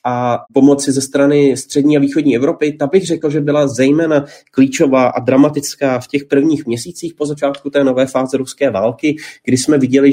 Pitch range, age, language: 130-150 Hz, 30-49, Slovak